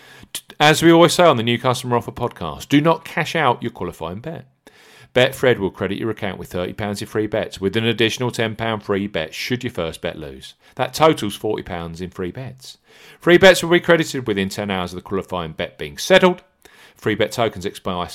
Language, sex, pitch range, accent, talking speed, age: English, male, 95-150 Hz, British, 205 wpm, 40-59